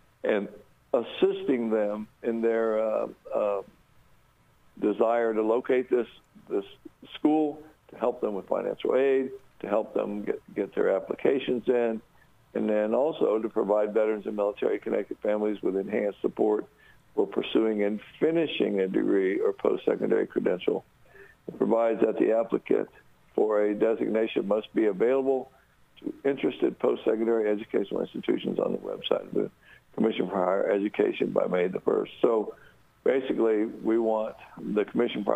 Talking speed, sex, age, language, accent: 140 wpm, male, 60-79, English, American